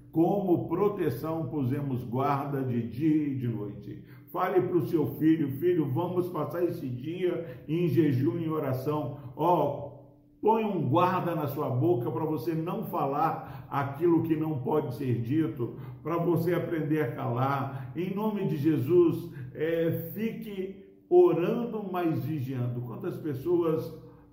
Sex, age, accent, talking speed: male, 60-79, Brazilian, 135 wpm